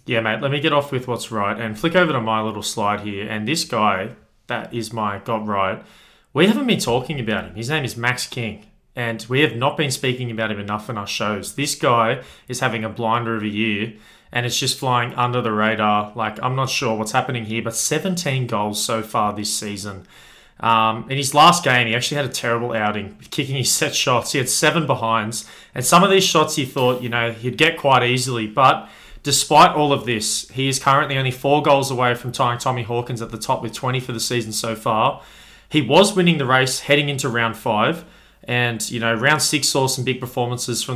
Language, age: English, 20-39